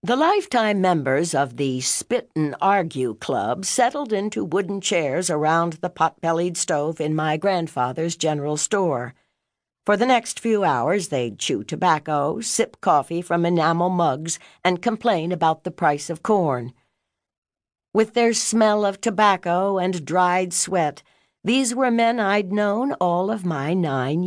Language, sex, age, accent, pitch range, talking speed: English, female, 60-79, American, 145-200 Hz, 145 wpm